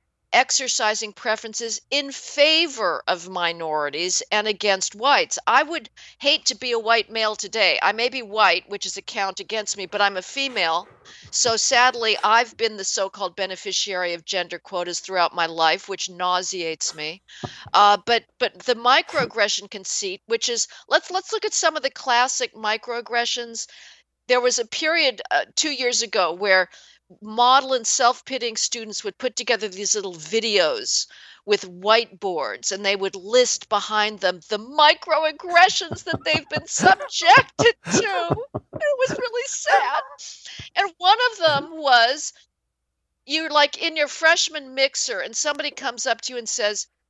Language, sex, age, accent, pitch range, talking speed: English, female, 50-69, American, 200-310 Hz, 155 wpm